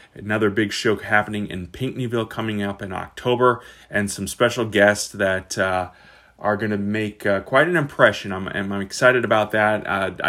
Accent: American